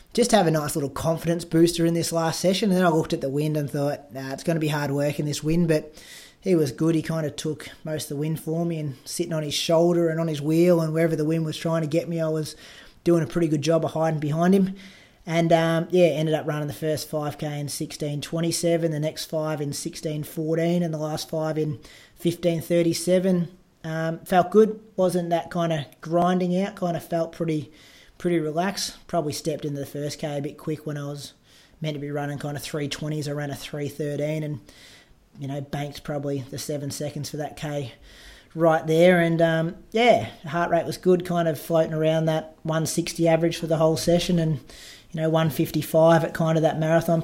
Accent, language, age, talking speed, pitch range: Australian, English, 20-39, 225 wpm, 155-170 Hz